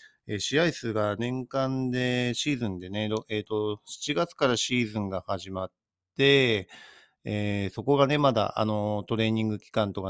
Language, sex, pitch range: Japanese, male, 95-125 Hz